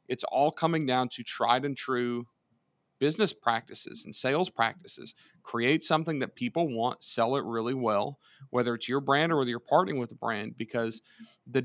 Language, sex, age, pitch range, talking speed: English, male, 40-59, 120-140 Hz, 180 wpm